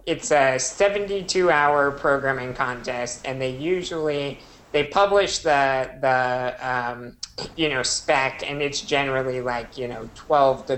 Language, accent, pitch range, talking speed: English, American, 125-145 Hz, 135 wpm